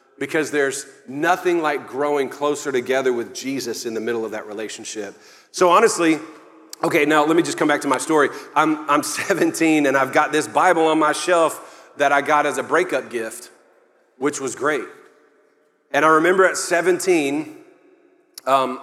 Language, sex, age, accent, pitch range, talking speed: English, male, 40-59, American, 135-165 Hz, 170 wpm